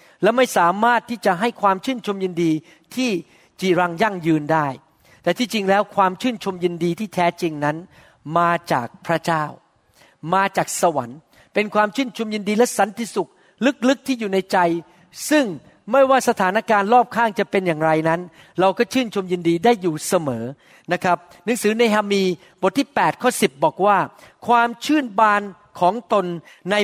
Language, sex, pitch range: Thai, male, 170-220 Hz